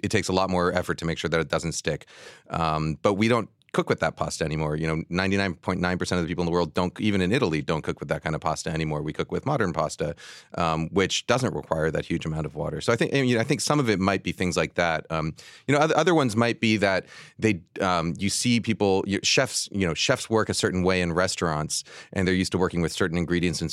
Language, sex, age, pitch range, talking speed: English, male, 30-49, 85-110 Hz, 265 wpm